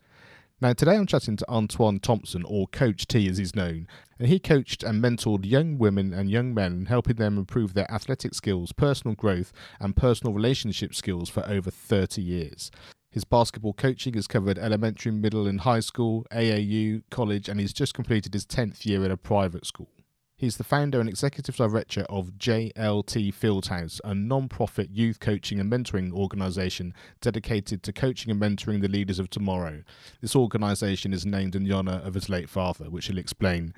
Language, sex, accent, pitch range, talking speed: English, male, British, 95-115 Hz, 180 wpm